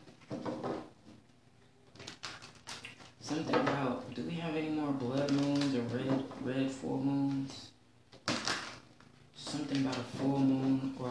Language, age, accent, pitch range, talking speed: English, 20-39, American, 120-135 Hz, 110 wpm